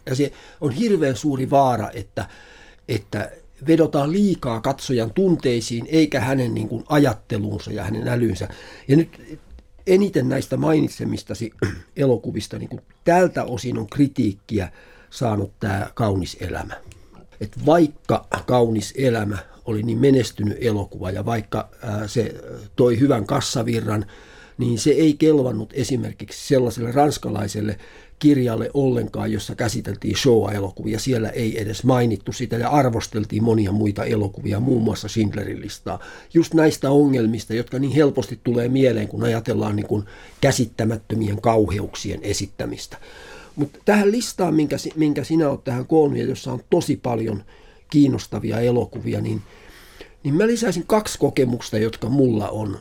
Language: Finnish